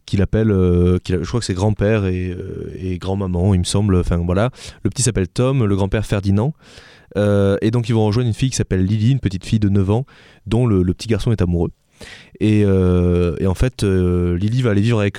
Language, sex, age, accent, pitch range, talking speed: French, male, 20-39, French, 95-120 Hz, 240 wpm